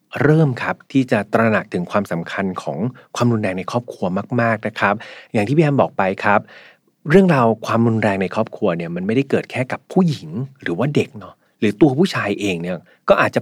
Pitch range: 105-140 Hz